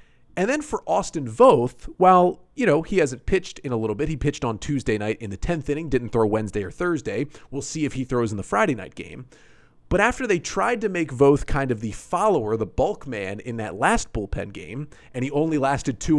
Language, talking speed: English, 235 wpm